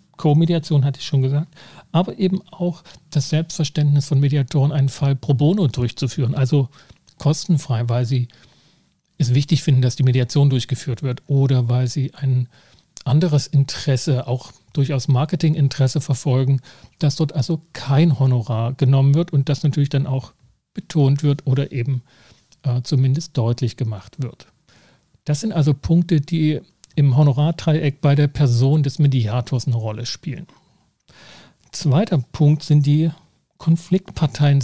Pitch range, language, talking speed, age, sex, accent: 130-155 Hz, German, 140 wpm, 40-59, male, German